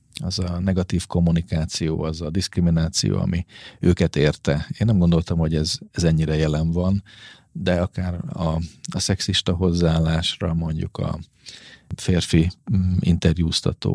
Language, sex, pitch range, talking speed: Hungarian, male, 80-95 Hz, 125 wpm